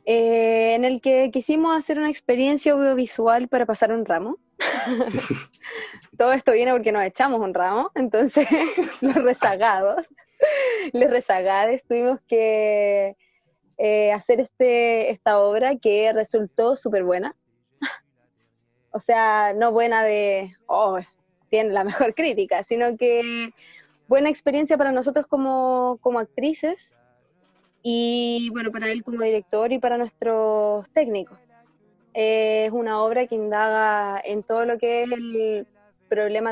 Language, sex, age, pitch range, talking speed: Spanish, female, 20-39, 210-255 Hz, 130 wpm